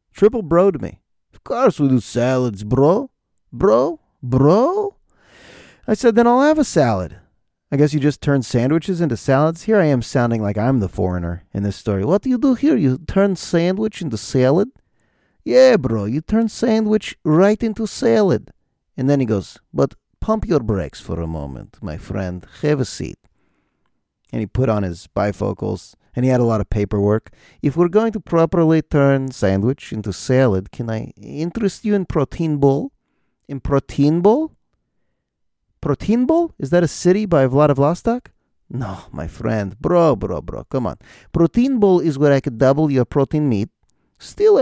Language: English